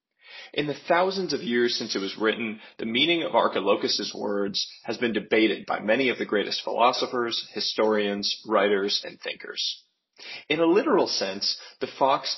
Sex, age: male, 30-49